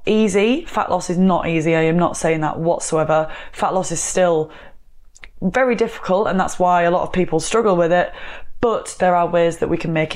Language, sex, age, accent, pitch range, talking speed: English, female, 20-39, British, 170-195 Hz, 215 wpm